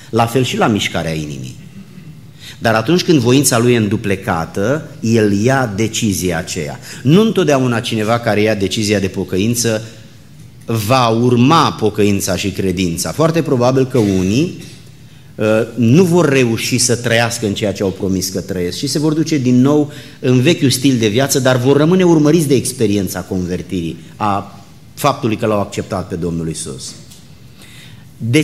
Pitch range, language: 100-135 Hz, Romanian